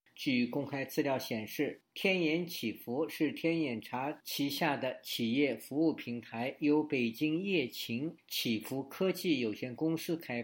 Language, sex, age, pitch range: Chinese, male, 50-69, 125-160 Hz